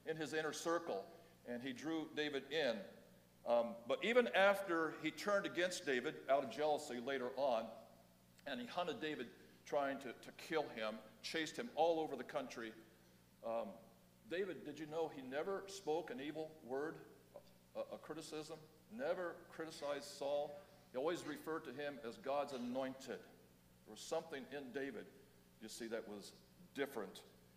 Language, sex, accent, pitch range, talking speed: English, male, American, 135-185 Hz, 155 wpm